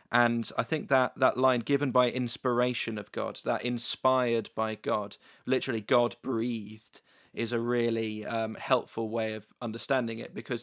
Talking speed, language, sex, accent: 160 wpm, English, male, British